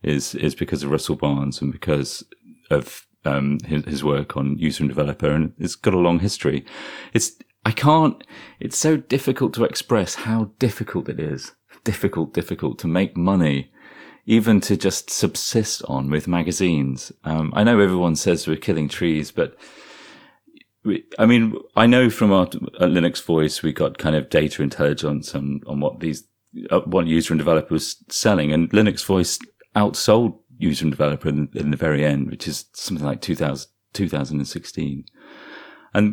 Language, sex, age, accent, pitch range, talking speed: English, male, 30-49, British, 75-105 Hz, 170 wpm